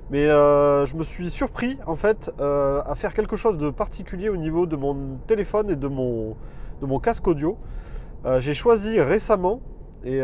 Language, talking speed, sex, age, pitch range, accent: French, 180 wpm, male, 30-49, 130-180 Hz, French